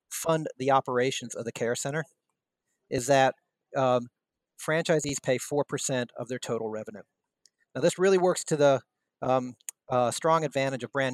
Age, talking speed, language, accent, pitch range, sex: 40-59, 155 wpm, English, American, 125-145 Hz, male